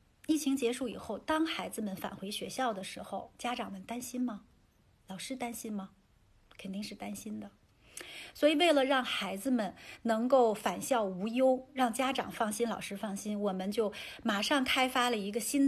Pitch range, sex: 200-245 Hz, female